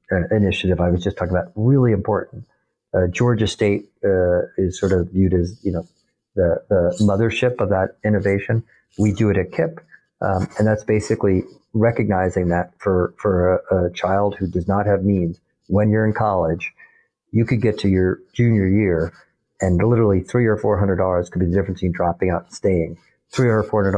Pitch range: 90-105 Hz